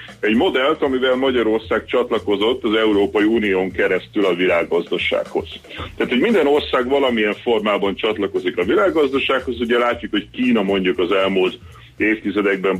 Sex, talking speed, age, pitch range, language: male, 130 wpm, 40-59, 95-160 Hz, Hungarian